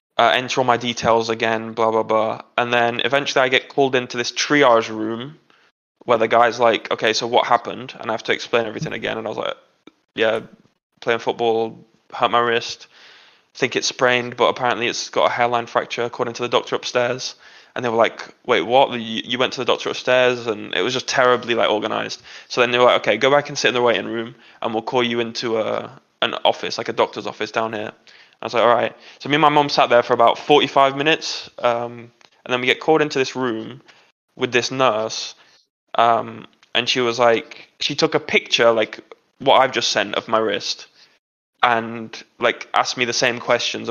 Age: 20-39